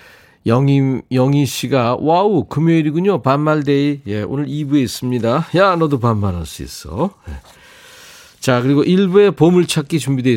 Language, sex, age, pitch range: Korean, male, 40-59, 105-155 Hz